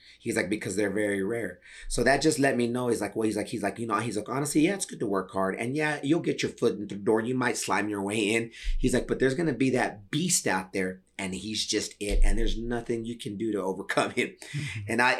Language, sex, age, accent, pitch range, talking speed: English, male, 30-49, American, 110-155 Hz, 280 wpm